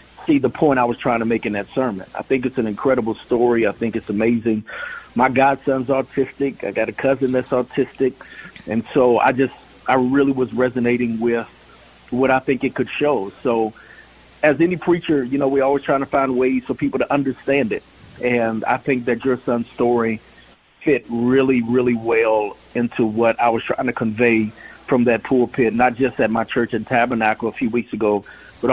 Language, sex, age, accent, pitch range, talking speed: English, male, 50-69, American, 110-130 Hz, 200 wpm